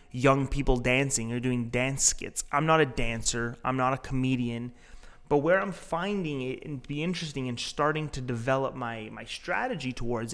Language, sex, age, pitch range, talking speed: English, male, 30-49, 125-155 Hz, 180 wpm